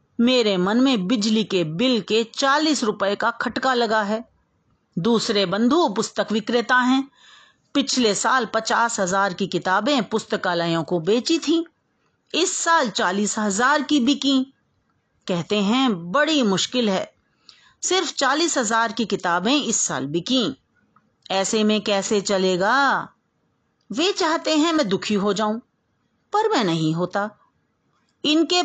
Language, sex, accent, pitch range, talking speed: Hindi, female, native, 205-275 Hz, 130 wpm